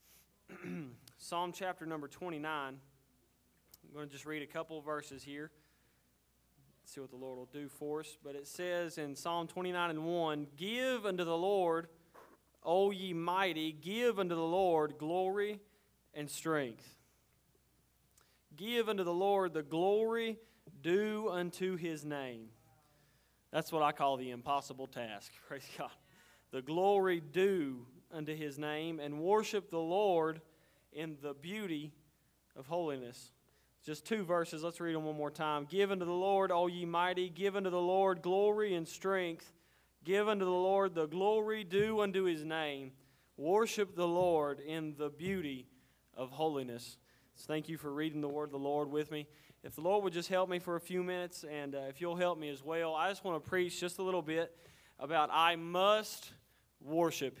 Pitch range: 145-185 Hz